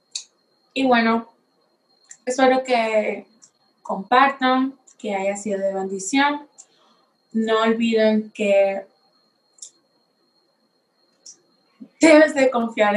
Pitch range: 210-250 Hz